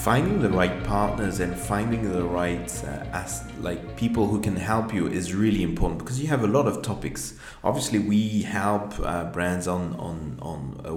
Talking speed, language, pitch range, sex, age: 175 wpm, English, 85-105 Hz, male, 30-49